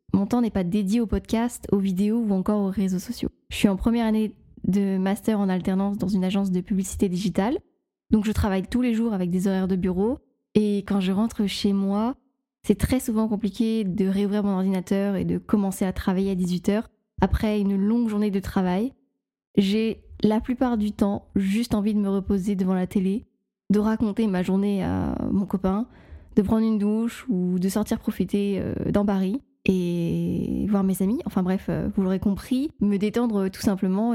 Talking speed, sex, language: 195 wpm, female, French